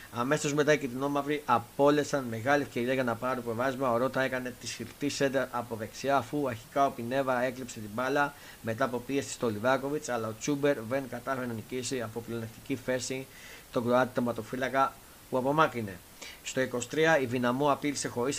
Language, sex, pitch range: Greek, male, 115-140 Hz